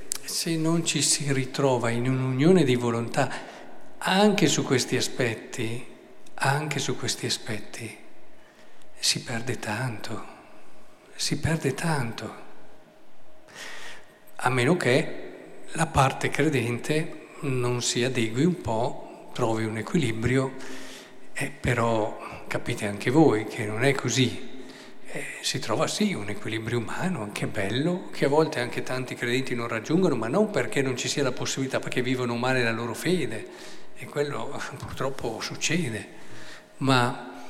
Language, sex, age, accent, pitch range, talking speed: Italian, male, 50-69, native, 120-145 Hz, 130 wpm